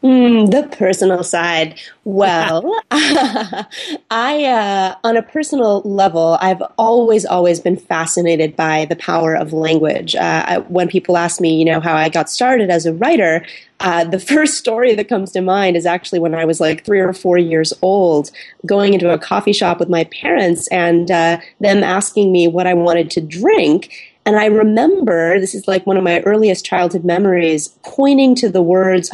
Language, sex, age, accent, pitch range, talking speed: English, female, 30-49, American, 170-215 Hz, 185 wpm